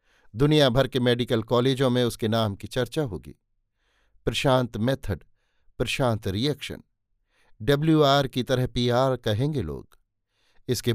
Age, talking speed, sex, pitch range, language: 50-69, 130 wpm, male, 105-135 Hz, Hindi